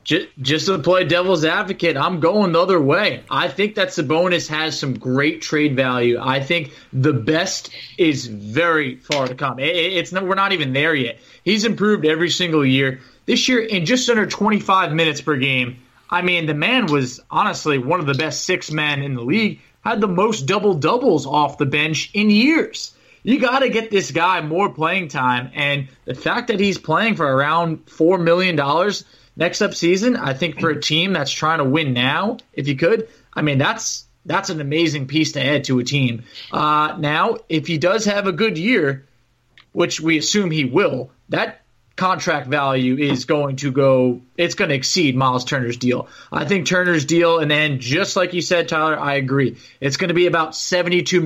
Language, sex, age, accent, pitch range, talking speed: English, male, 20-39, American, 140-180 Hz, 195 wpm